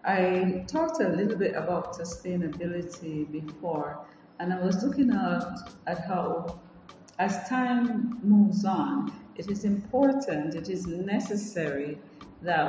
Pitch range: 160-195 Hz